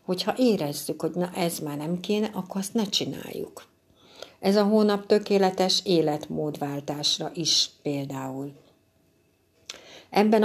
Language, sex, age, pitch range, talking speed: Hungarian, female, 60-79, 155-195 Hz, 115 wpm